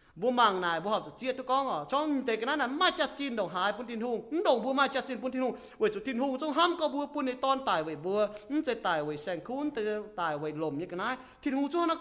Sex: male